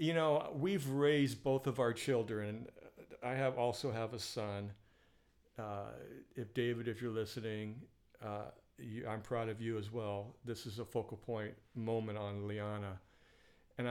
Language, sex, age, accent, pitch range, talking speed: English, male, 50-69, American, 110-130 Hz, 160 wpm